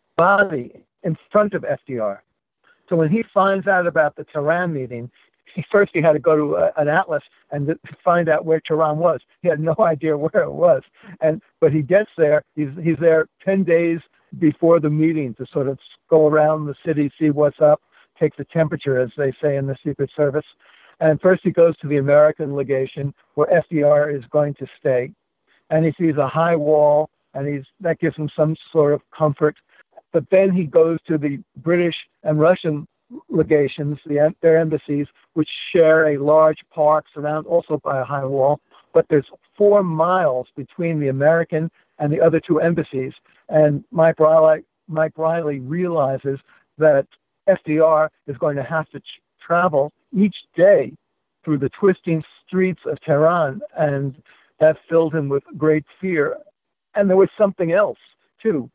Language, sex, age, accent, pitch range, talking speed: English, male, 60-79, American, 150-170 Hz, 175 wpm